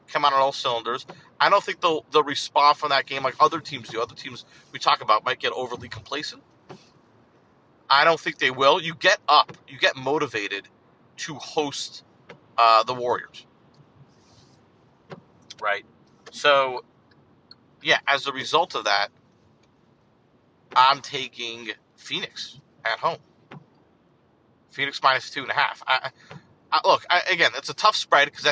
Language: English